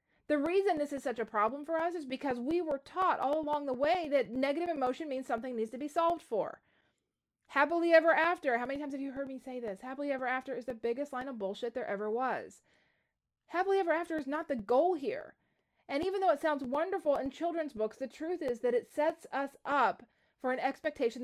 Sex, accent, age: female, American, 30-49